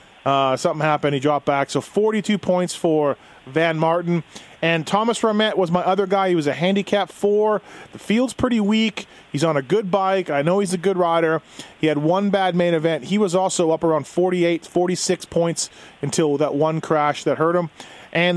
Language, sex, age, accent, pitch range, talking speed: English, male, 30-49, American, 145-185 Hz, 200 wpm